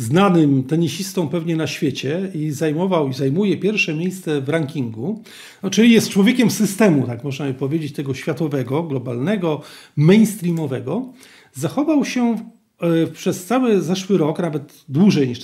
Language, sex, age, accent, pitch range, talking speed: Polish, male, 40-59, native, 160-230 Hz, 130 wpm